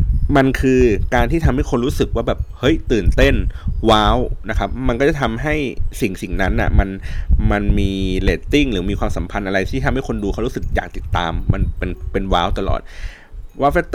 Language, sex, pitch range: Thai, male, 90-115 Hz